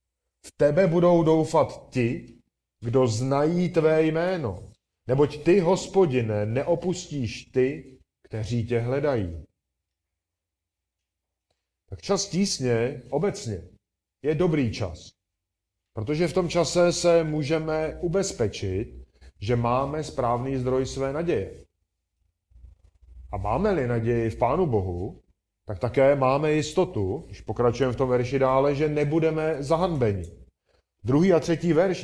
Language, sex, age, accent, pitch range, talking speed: Czech, male, 40-59, native, 100-155 Hz, 110 wpm